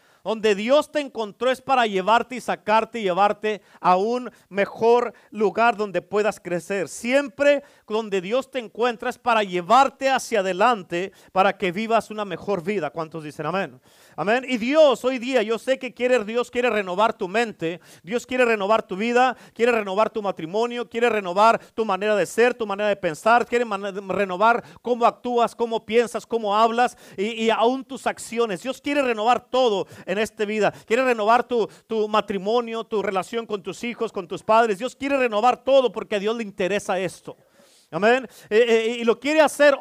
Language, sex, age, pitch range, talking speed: Spanish, male, 40-59, 205-250 Hz, 180 wpm